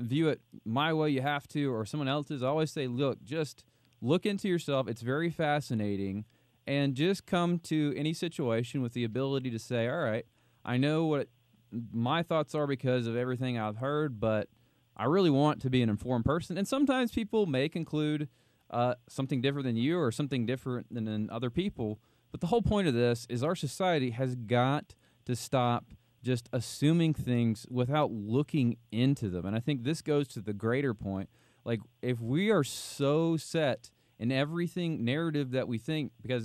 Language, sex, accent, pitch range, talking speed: English, male, American, 120-155 Hz, 185 wpm